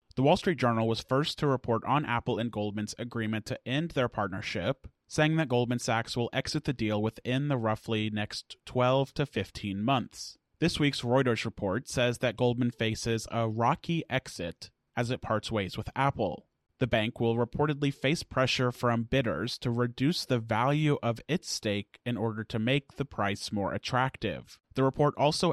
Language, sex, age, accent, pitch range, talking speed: English, male, 30-49, American, 110-130 Hz, 180 wpm